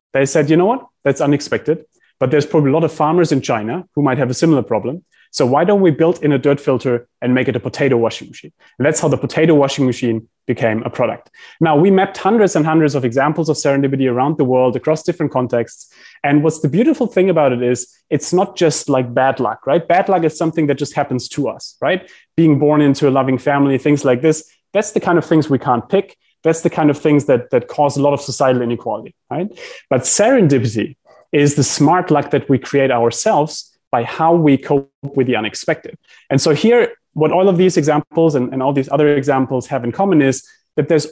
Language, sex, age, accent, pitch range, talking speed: English, male, 30-49, German, 130-160 Hz, 230 wpm